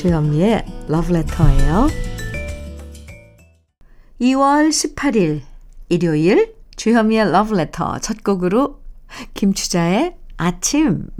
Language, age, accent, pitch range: Korean, 50-69, native, 170-240 Hz